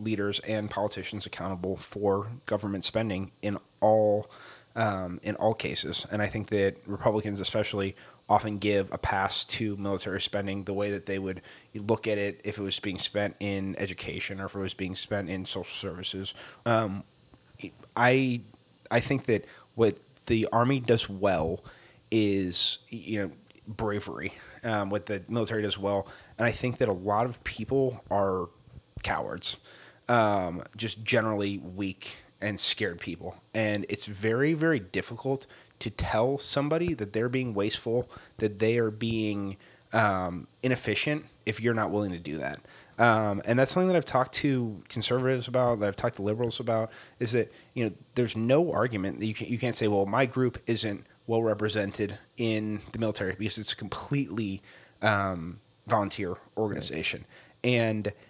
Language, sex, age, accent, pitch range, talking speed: English, male, 30-49, American, 100-120 Hz, 160 wpm